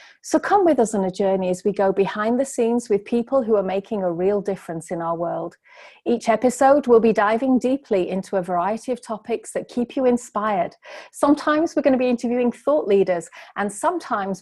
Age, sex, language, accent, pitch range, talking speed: 30-49, female, English, British, 190-240 Hz, 205 wpm